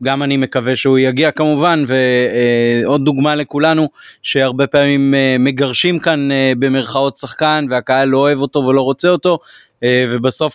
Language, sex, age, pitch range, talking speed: Hebrew, male, 30-49, 125-145 Hz, 130 wpm